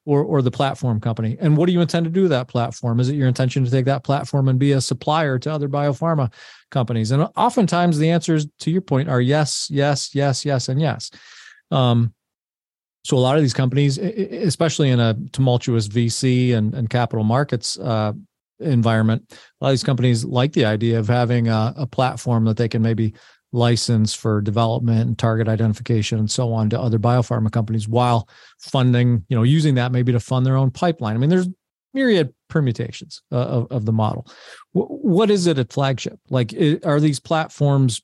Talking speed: 195 wpm